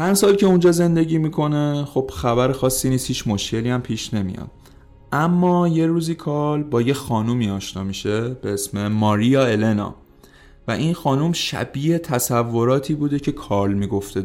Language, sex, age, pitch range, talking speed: Persian, male, 30-49, 100-135 Hz, 155 wpm